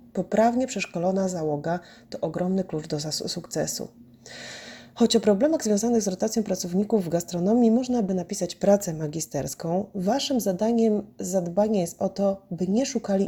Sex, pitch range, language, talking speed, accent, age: female, 175-225 Hz, Polish, 140 wpm, native, 30-49